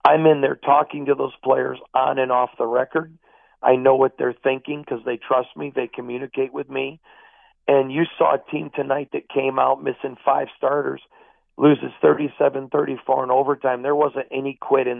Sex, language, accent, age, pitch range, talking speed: male, English, American, 50-69, 130-145 Hz, 185 wpm